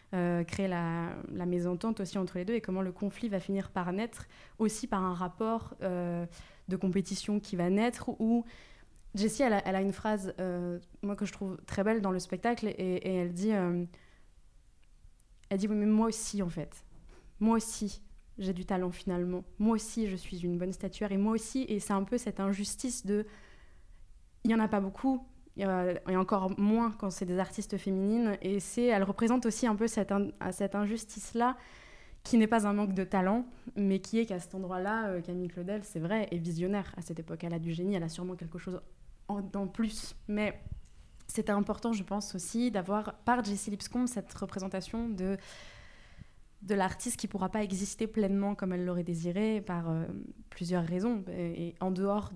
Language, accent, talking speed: French, French, 195 wpm